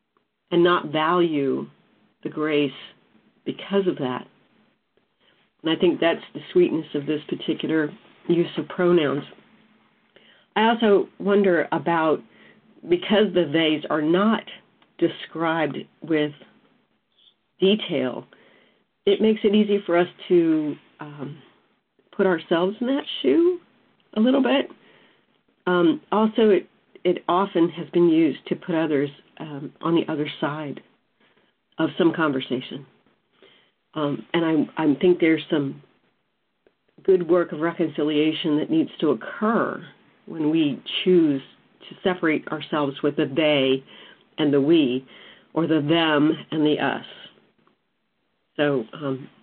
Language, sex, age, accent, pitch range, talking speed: English, female, 50-69, American, 150-195 Hz, 125 wpm